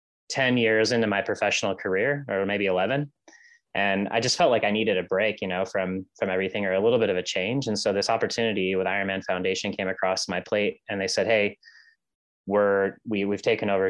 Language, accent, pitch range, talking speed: English, American, 95-110 Hz, 215 wpm